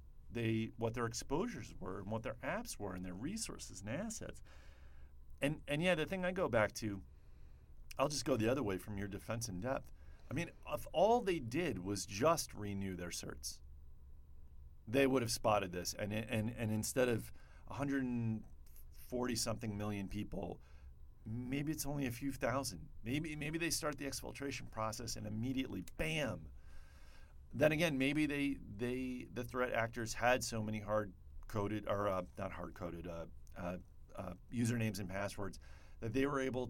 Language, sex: English, male